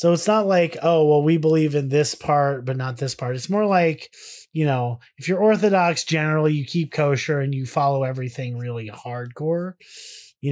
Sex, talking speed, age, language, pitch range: male, 195 wpm, 30-49, English, 135-180 Hz